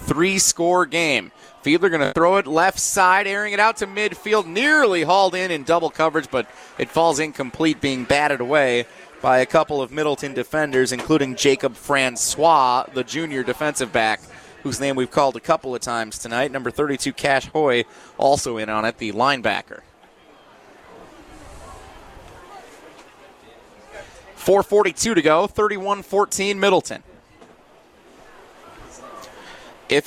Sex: male